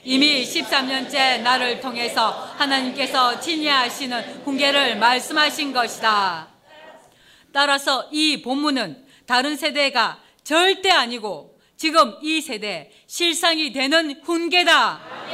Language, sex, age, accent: Korean, female, 40-59, native